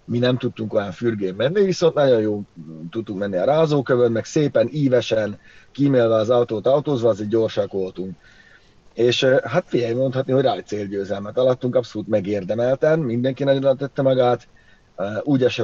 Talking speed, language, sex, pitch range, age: 150 wpm, Hungarian, male, 105-140 Hz, 30-49